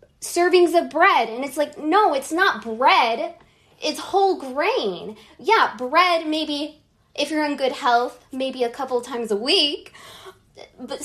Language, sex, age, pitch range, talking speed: English, female, 20-39, 245-310 Hz, 150 wpm